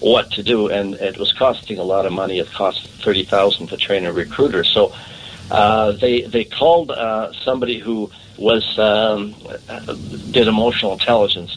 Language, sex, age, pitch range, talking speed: English, male, 60-79, 105-120 Hz, 165 wpm